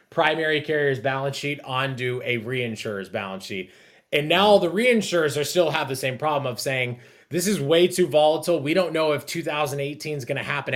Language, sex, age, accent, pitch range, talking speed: English, male, 20-39, American, 125-160 Hz, 195 wpm